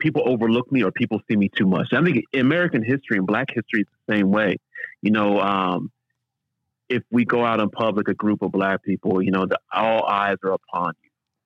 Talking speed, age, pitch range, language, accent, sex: 220 wpm, 30-49, 100-120 Hz, English, American, male